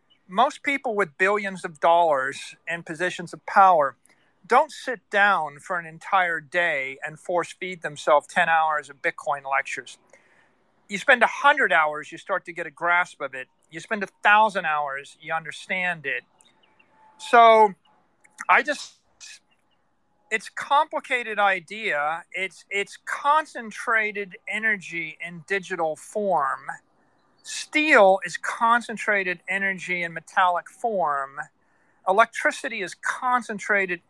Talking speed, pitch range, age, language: 125 wpm, 170-220 Hz, 40-59, English